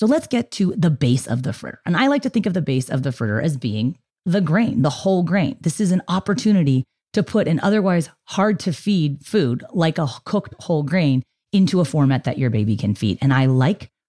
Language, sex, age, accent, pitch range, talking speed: English, female, 30-49, American, 120-175 Hz, 235 wpm